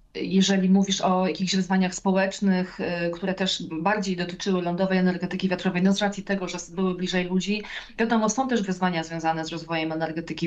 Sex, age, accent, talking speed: female, 30-49, native, 165 wpm